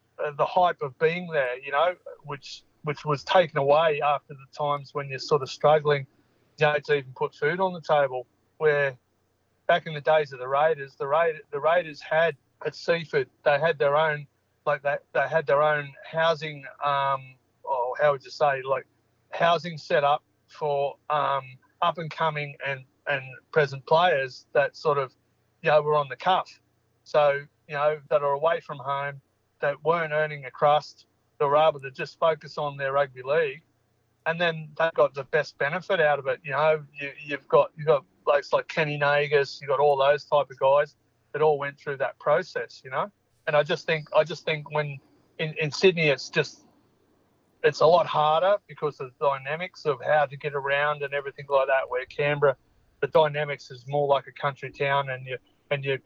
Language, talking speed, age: English, 195 wpm, 30-49